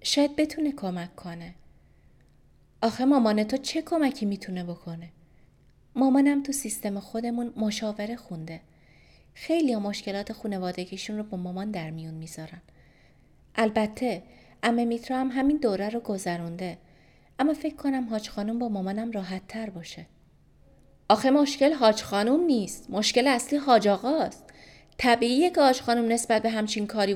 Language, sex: Persian, female